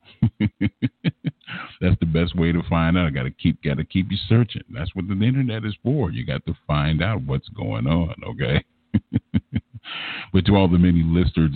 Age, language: 50-69, English